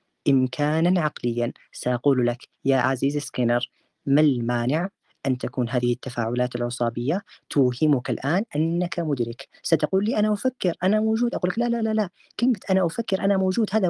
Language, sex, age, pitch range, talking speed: Arabic, female, 30-49, 130-180 Hz, 155 wpm